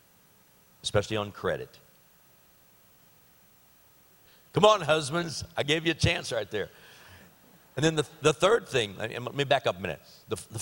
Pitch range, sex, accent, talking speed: 90-135 Hz, male, American, 155 wpm